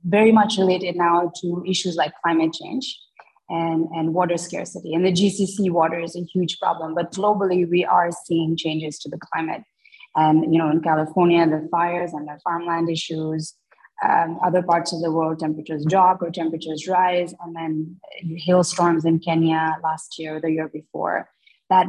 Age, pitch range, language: 20-39, 165-195 Hz, English